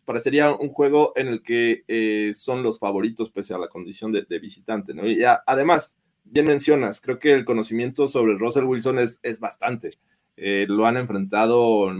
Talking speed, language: 190 wpm, Spanish